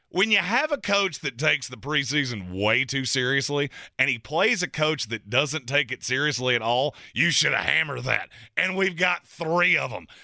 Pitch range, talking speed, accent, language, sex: 135-175 Hz, 205 wpm, American, English, male